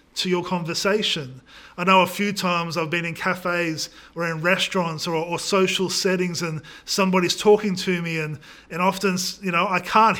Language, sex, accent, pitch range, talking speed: English, male, Australian, 170-205 Hz, 180 wpm